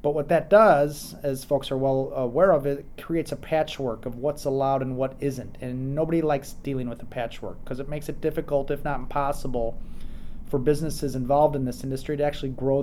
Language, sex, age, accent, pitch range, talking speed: English, male, 30-49, American, 125-145 Hz, 210 wpm